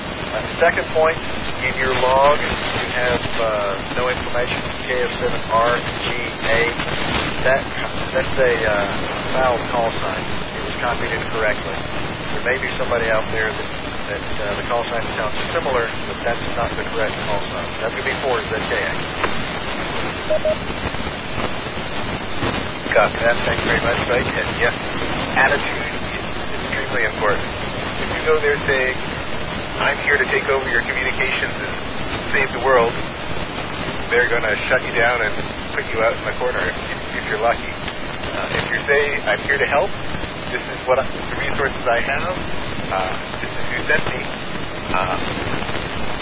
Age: 40-59